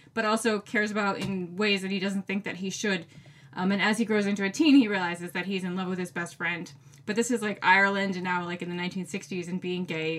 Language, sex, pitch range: English, female, 180-235 Hz